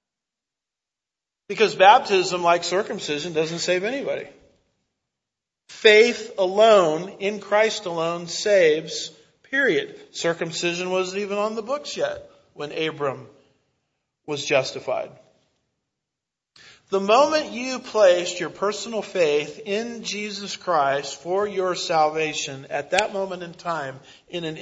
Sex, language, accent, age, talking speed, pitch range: male, English, American, 40-59, 110 wpm, 145-200 Hz